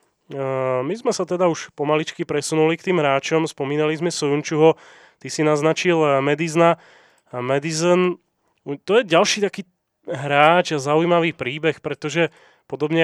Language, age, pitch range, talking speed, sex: Slovak, 30-49, 140-160 Hz, 130 wpm, male